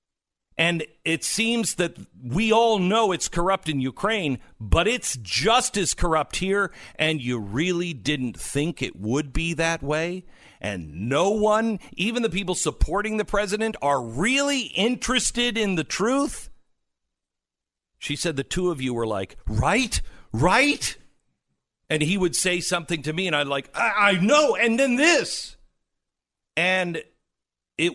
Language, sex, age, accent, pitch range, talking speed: English, male, 50-69, American, 125-190 Hz, 150 wpm